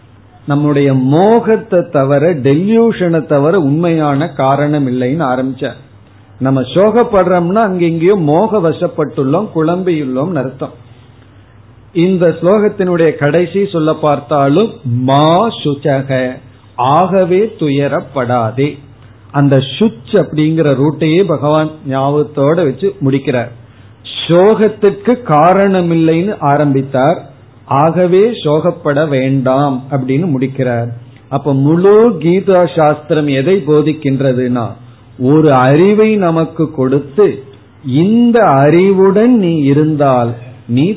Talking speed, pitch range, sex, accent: 75 wpm, 130-180 Hz, male, native